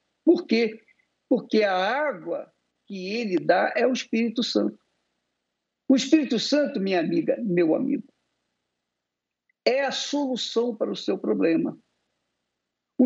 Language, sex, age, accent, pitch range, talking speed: Portuguese, male, 60-79, Brazilian, 180-260 Hz, 125 wpm